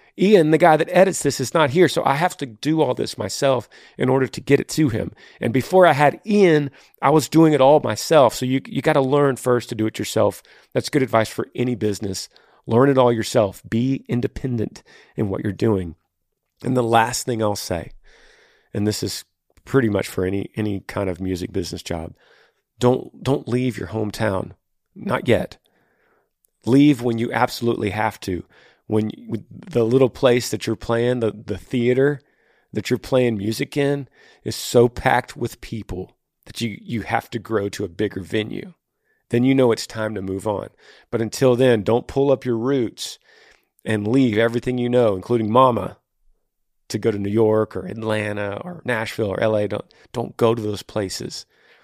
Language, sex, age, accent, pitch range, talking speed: English, male, 40-59, American, 105-130 Hz, 190 wpm